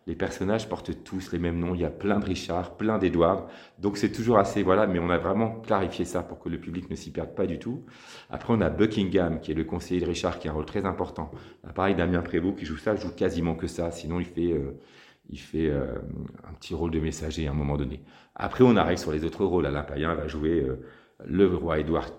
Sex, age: male, 40-59